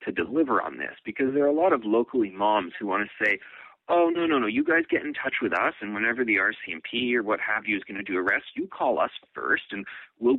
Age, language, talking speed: 30-49, English, 265 wpm